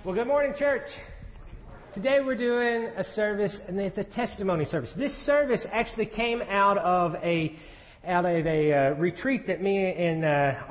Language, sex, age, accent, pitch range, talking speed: English, male, 40-59, American, 175-235 Hz, 170 wpm